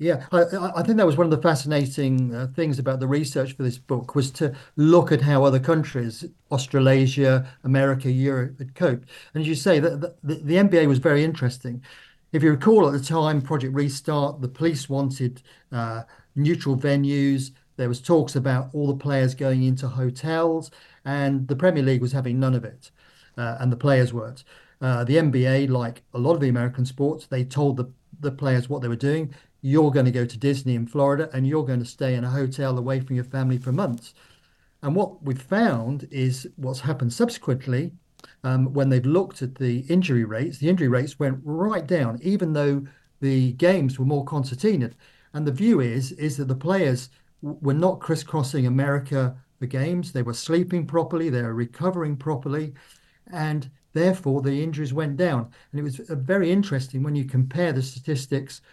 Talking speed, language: 190 wpm, English